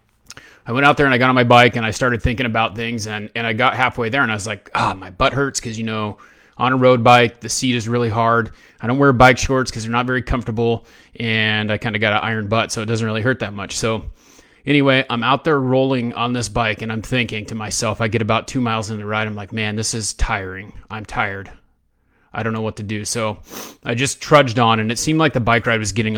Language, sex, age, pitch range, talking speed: English, male, 30-49, 110-125 Hz, 270 wpm